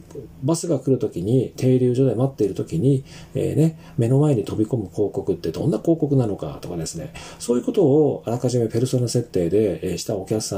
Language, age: Japanese, 40-59